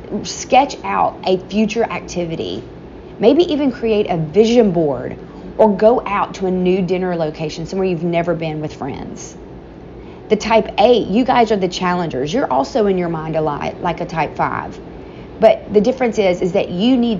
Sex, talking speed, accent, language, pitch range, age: female, 180 wpm, American, English, 170-220 Hz, 30-49